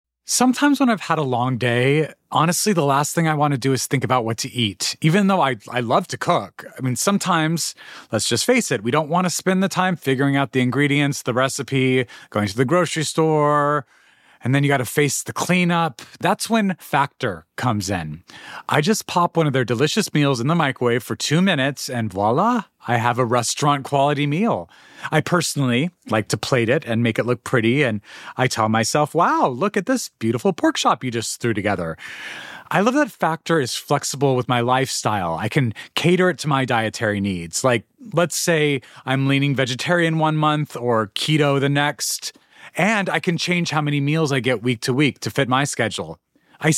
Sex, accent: male, American